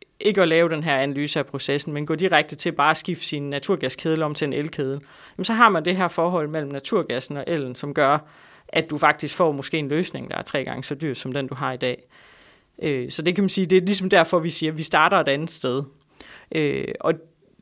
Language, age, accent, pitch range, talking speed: Danish, 30-49, native, 150-185 Hz, 240 wpm